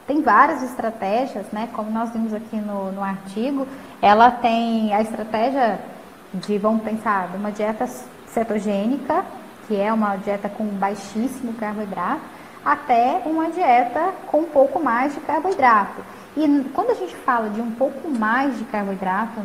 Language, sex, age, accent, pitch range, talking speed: Portuguese, female, 10-29, Brazilian, 215-265 Hz, 150 wpm